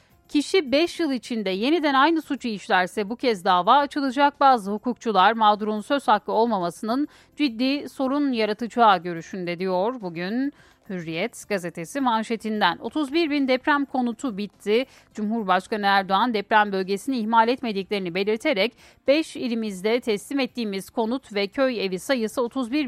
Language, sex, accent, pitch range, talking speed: Turkish, female, native, 205-265 Hz, 130 wpm